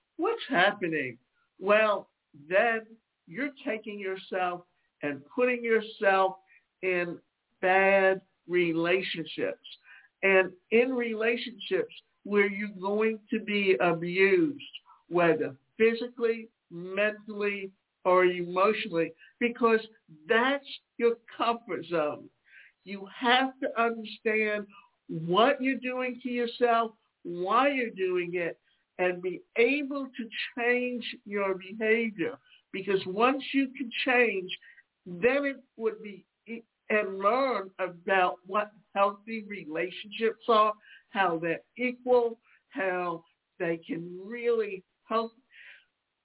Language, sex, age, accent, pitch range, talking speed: English, male, 60-79, American, 185-235 Hz, 100 wpm